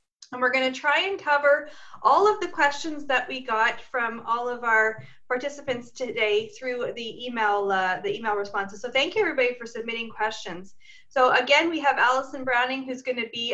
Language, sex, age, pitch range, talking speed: English, female, 30-49, 215-275 Hz, 195 wpm